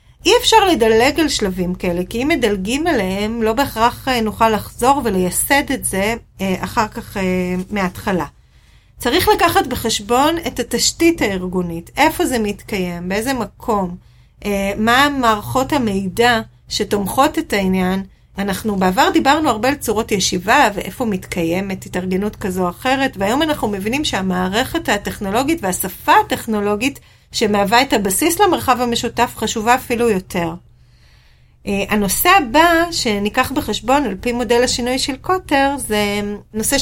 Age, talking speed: 30-49, 125 wpm